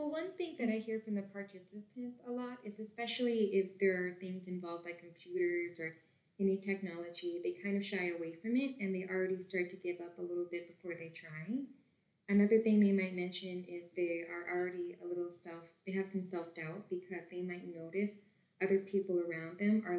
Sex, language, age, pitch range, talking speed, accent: female, English, 20-39, 175-210 Hz, 205 wpm, American